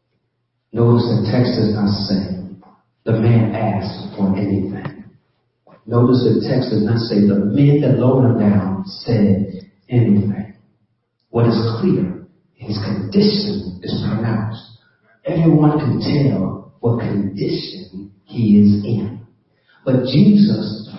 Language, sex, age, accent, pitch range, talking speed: English, male, 40-59, American, 110-185 Hz, 120 wpm